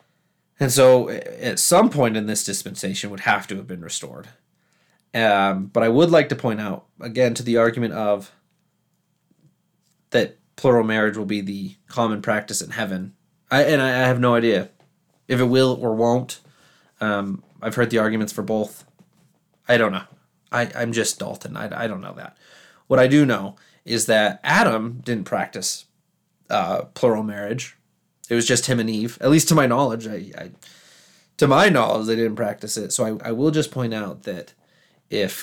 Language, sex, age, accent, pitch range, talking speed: English, male, 30-49, American, 105-130 Hz, 185 wpm